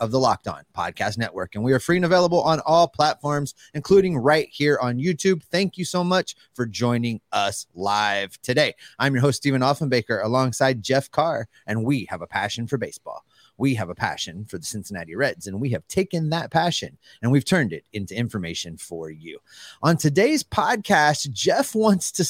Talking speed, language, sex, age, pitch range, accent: 195 wpm, English, male, 30-49, 130-170 Hz, American